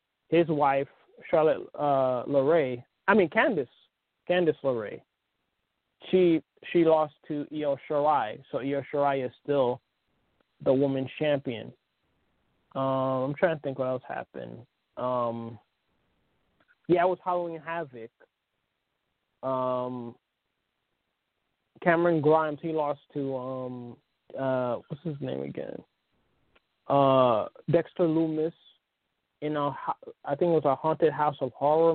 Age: 20-39